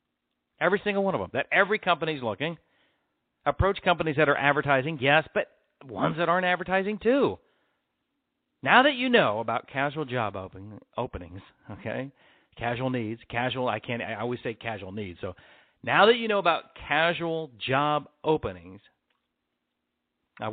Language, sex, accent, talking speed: English, male, American, 150 wpm